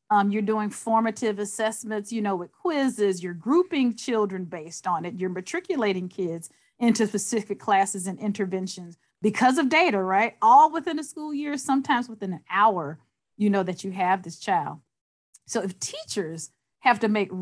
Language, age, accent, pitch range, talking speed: English, 40-59, American, 190-255 Hz, 170 wpm